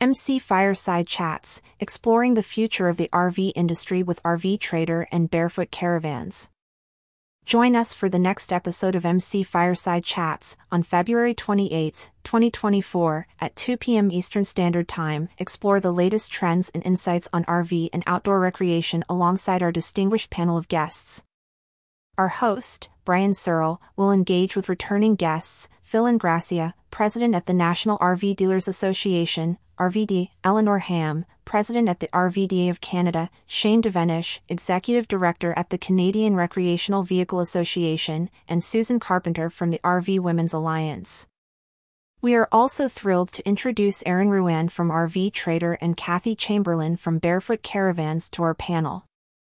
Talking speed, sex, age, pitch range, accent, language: 145 wpm, female, 30-49, 170-200 Hz, American, English